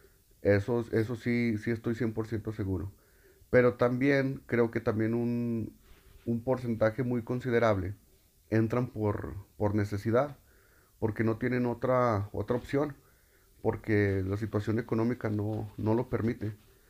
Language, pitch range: Spanish, 100-120 Hz